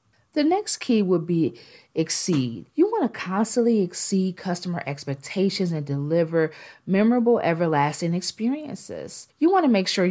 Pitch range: 160-220 Hz